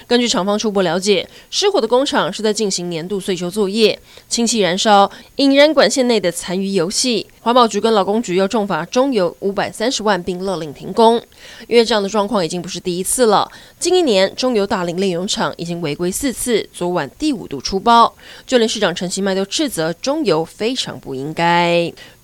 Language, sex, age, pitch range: Chinese, female, 20-39, 180-230 Hz